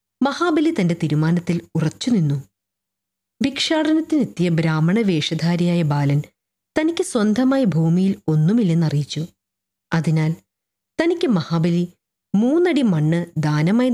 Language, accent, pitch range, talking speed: Malayalam, native, 150-210 Hz, 75 wpm